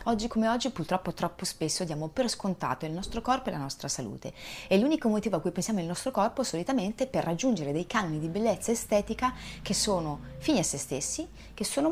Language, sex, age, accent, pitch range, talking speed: Italian, female, 30-49, native, 155-215 Hz, 205 wpm